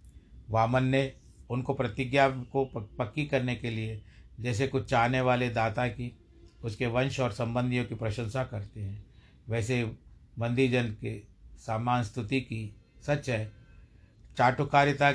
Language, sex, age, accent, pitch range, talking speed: Hindi, male, 60-79, native, 110-130 Hz, 125 wpm